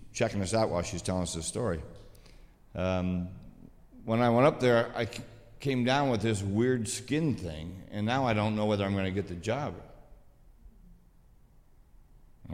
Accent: American